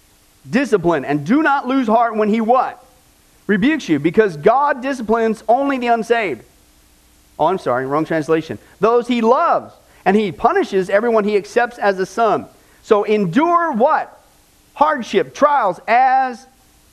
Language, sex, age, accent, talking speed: English, male, 40-59, American, 140 wpm